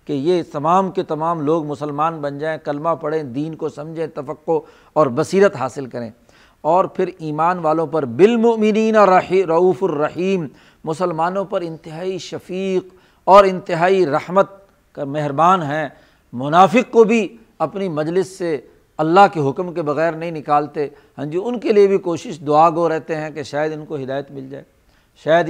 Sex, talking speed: male, 160 wpm